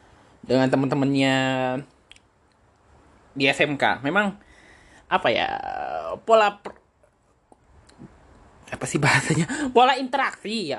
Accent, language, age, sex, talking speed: native, Indonesian, 20-39, male, 85 wpm